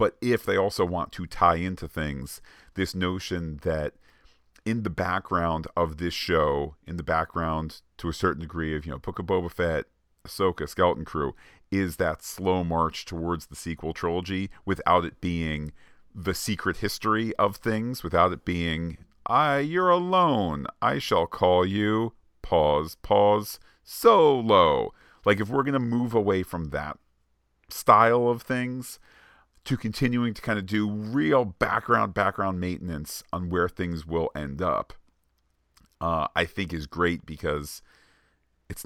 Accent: American